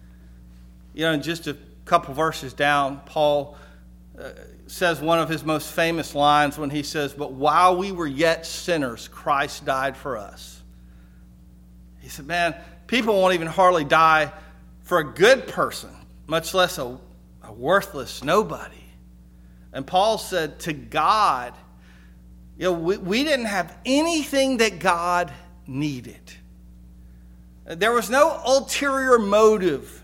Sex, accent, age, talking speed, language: male, American, 40-59, 135 wpm, English